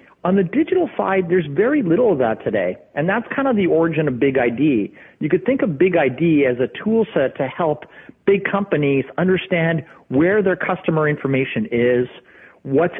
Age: 40-59